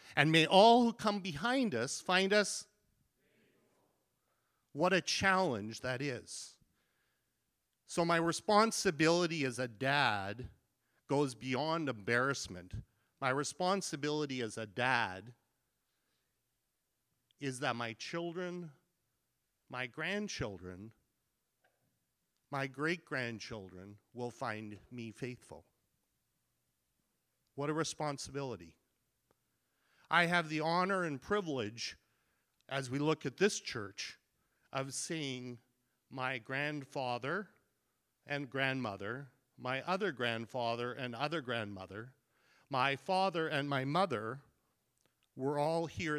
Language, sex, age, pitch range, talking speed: English, male, 40-59, 115-155 Hz, 95 wpm